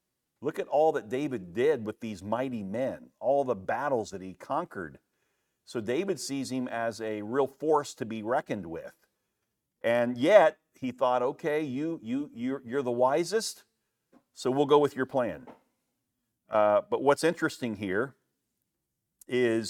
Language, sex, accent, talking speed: English, male, American, 155 wpm